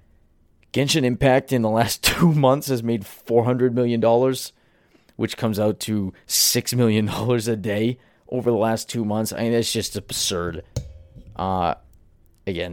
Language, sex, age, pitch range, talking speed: English, male, 20-39, 100-120 Hz, 145 wpm